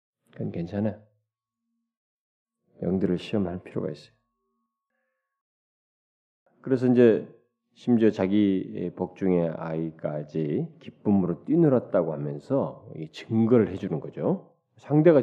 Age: 40-59